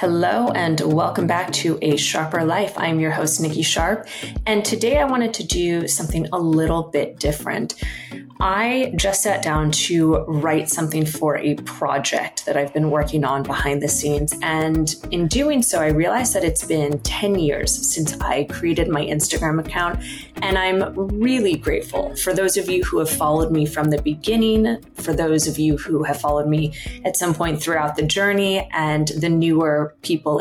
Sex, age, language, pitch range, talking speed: female, 20-39, English, 150-185 Hz, 180 wpm